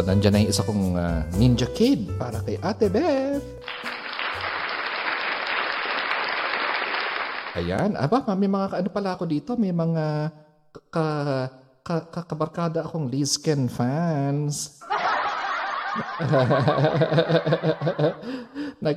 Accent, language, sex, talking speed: native, Filipino, male, 80 wpm